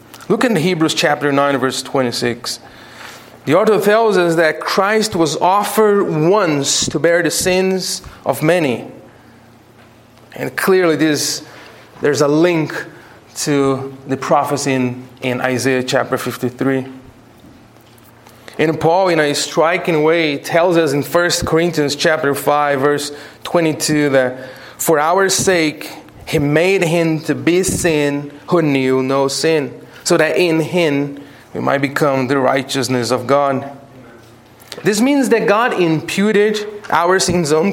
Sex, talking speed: male, 130 wpm